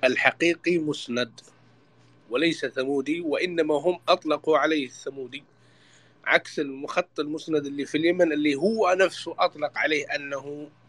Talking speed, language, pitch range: 115 wpm, English, 140-170 Hz